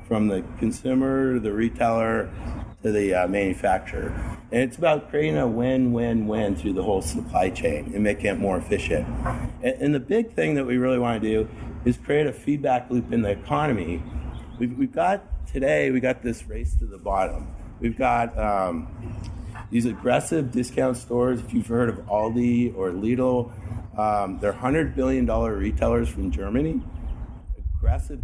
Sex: male